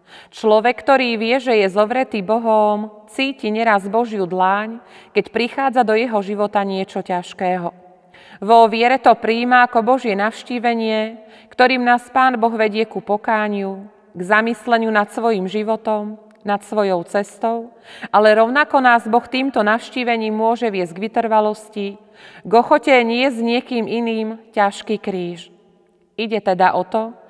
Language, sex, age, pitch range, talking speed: Slovak, female, 30-49, 200-235 Hz, 135 wpm